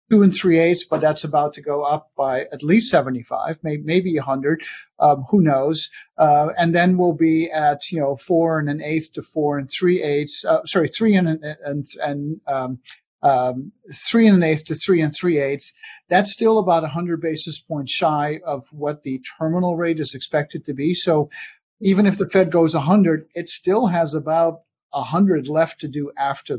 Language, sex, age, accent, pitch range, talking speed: English, male, 50-69, American, 145-175 Hz, 205 wpm